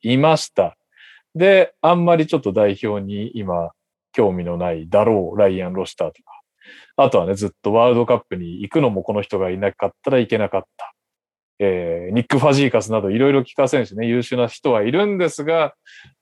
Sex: male